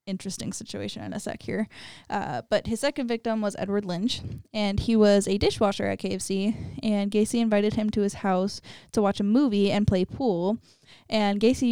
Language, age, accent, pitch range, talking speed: English, 10-29, American, 200-235 Hz, 190 wpm